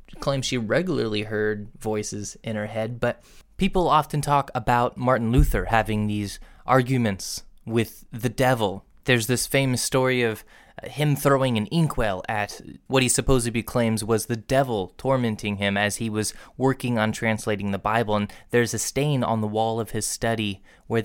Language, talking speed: English, 170 wpm